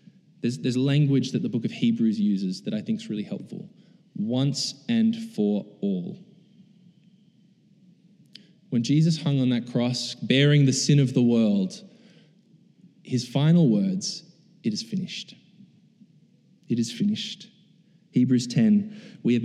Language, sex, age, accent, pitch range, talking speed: English, male, 20-39, Australian, 130-200 Hz, 135 wpm